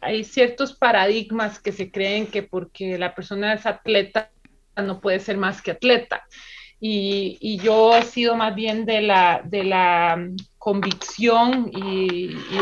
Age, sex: 30-49, male